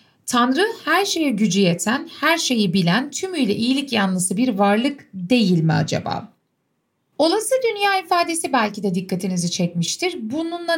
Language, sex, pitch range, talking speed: Turkish, female, 190-290 Hz, 135 wpm